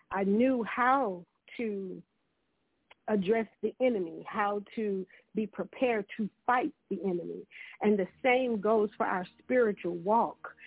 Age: 50-69